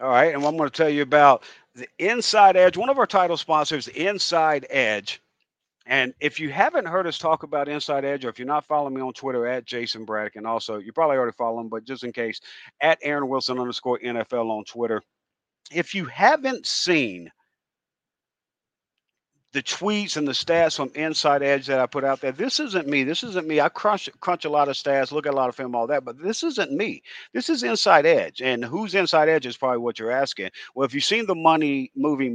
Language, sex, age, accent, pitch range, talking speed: English, male, 50-69, American, 125-170 Hz, 225 wpm